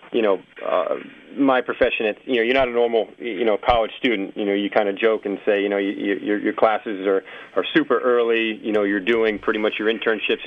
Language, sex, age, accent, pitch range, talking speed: English, male, 40-59, American, 100-110 Hz, 245 wpm